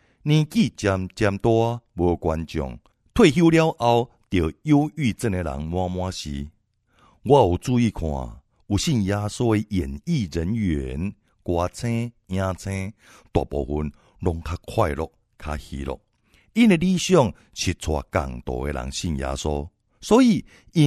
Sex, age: male, 60-79